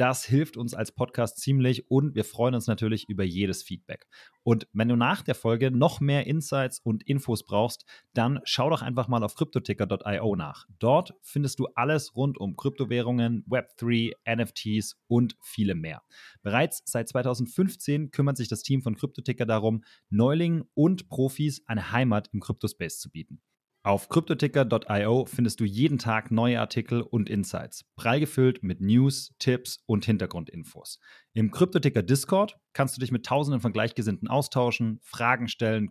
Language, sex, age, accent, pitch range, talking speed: German, male, 30-49, German, 105-135 Hz, 160 wpm